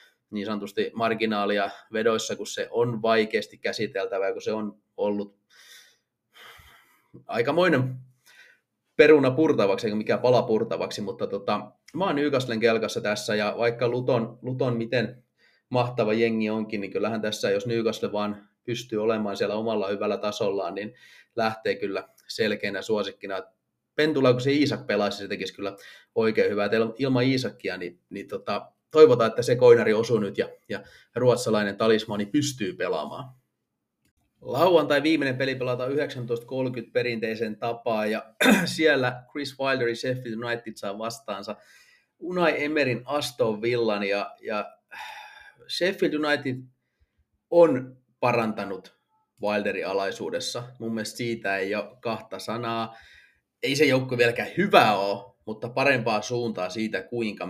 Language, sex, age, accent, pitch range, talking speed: Finnish, male, 30-49, native, 110-135 Hz, 130 wpm